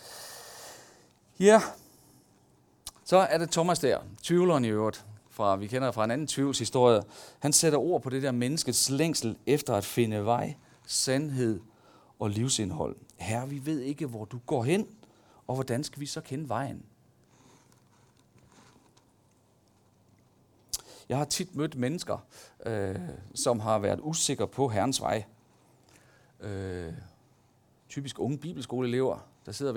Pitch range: 115-150 Hz